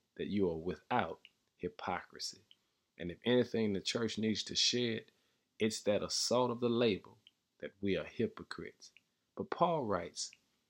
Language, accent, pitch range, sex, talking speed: English, American, 100-120 Hz, male, 145 wpm